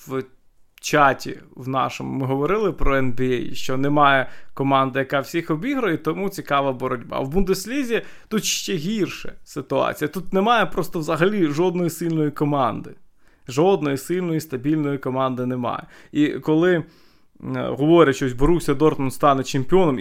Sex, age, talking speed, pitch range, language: male, 20-39, 130 wpm, 135-185 Hz, Ukrainian